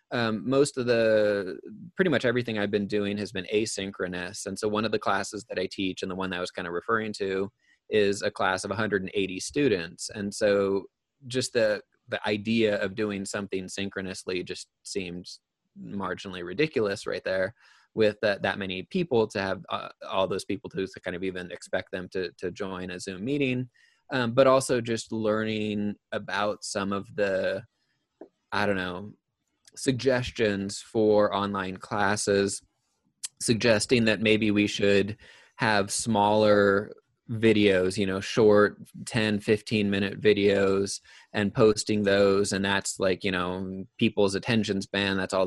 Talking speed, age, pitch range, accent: 160 wpm, 20-39, 95-110 Hz, American